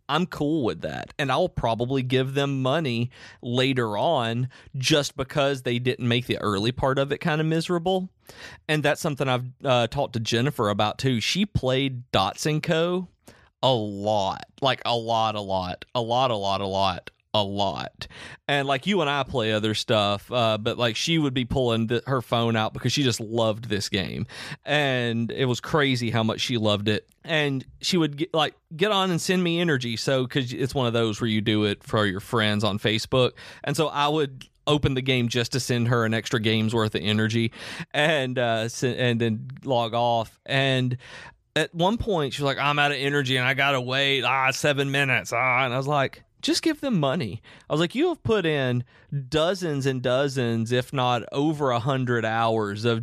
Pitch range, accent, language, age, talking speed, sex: 115-145 Hz, American, English, 40-59, 205 wpm, male